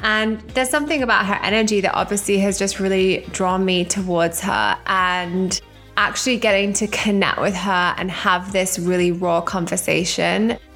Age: 20-39